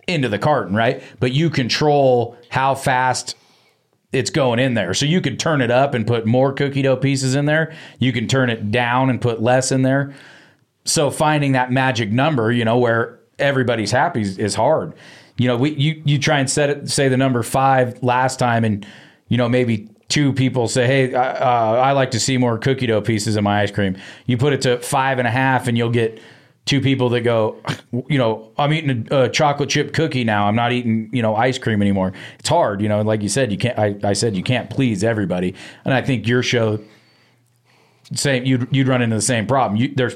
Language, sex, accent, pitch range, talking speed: English, male, American, 110-130 Hz, 220 wpm